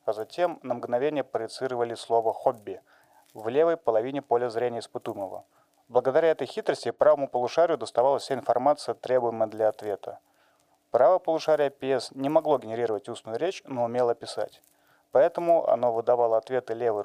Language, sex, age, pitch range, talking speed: Russian, male, 30-49, 110-130 Hz, 140 wpm